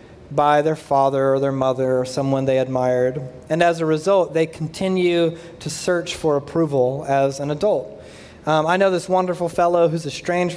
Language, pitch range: English, 145-175 Hz